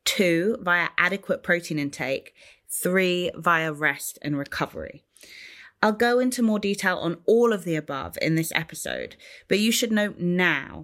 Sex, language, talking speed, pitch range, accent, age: female, English, 155 wpm, 165-215 Hz, British, 20-39